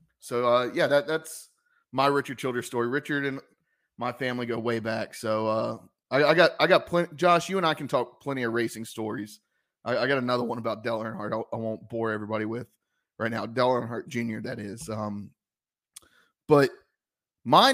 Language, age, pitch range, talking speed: English, 30-49, 115-155 Hz, 195 wpm